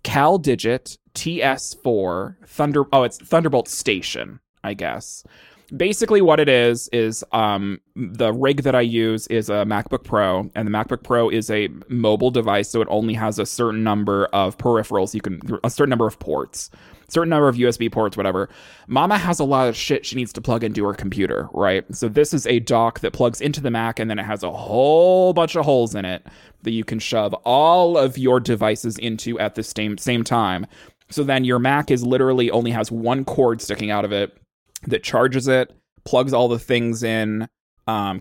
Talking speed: 205 wpm